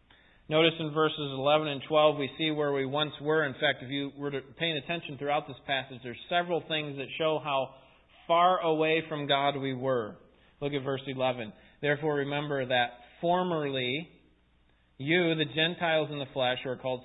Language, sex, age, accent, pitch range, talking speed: English, male, 30-49, American, 135-170 Hz, 180 wpm